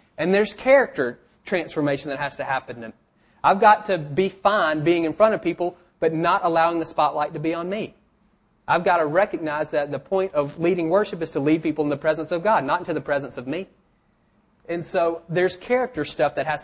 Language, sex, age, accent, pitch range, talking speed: English, male, 30-49, American, 150-185 Hz, 215 wpm